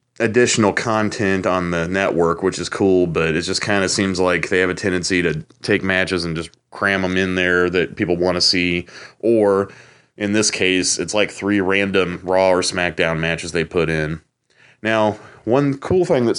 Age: 30-49